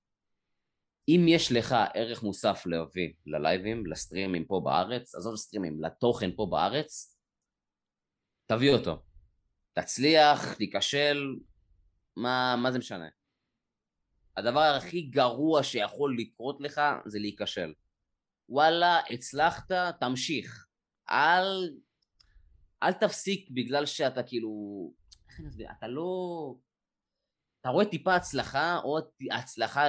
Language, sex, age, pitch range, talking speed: Hebrew, male, 20-39, 105-160 Hz, 95 wpm